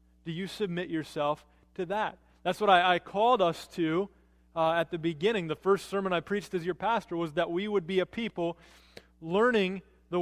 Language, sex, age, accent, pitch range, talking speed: English, male, 30-49, American, 150-210 Hz, 200 wpm